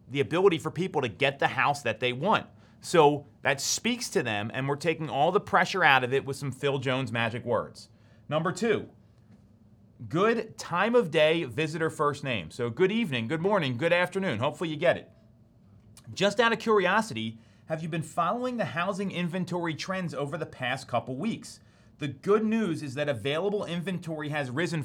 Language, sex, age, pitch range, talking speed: English, male, 30-49, 125-175 Hz, 185 wpm